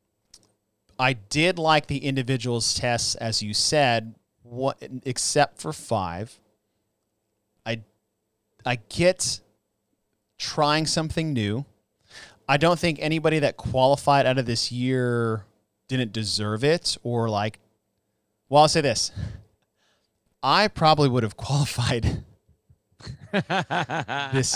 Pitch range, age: 110-145 Hz, 30-49